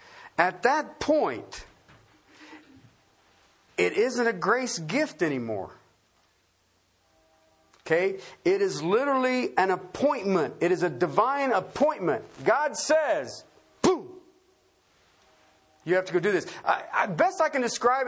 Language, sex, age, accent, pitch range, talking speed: English, male, 40-59, American, 180-305 Hz, 110 wpm